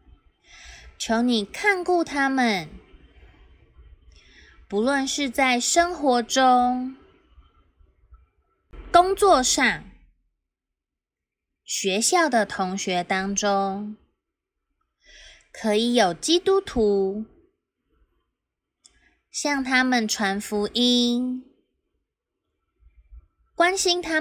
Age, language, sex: 20-39, Chinese, female